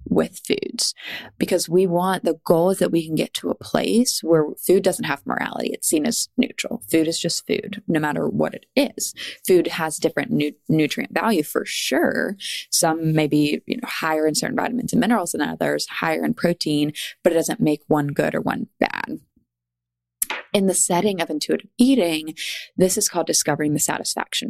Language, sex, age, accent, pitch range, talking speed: English, female, 20-39, American, 150-185 Hz, 185 wpm